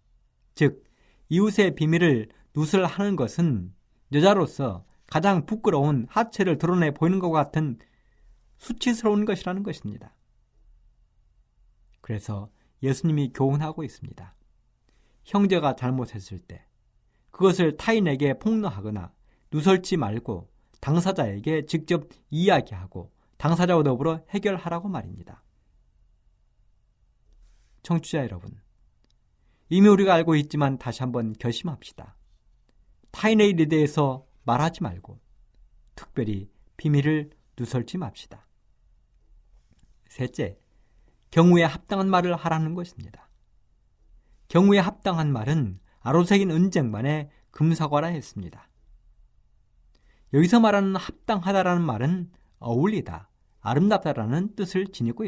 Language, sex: Korean, male